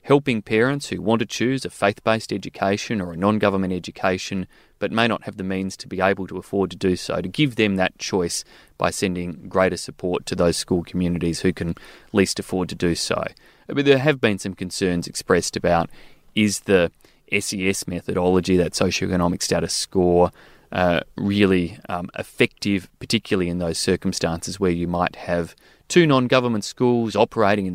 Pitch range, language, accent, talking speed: 90-105 Hz, English, Australian, 170 wpm